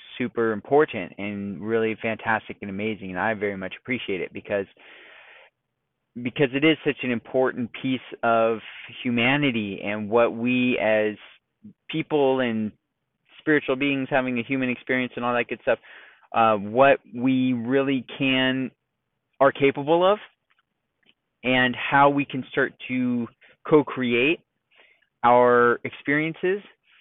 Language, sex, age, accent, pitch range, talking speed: English, male, 20-39, American, 115-140 Hz, 125 wpm